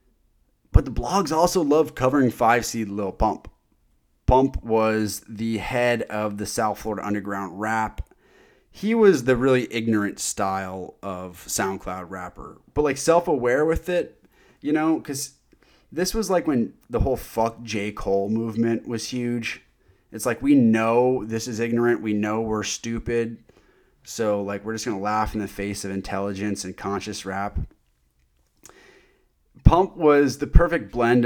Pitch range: 100-120 Hz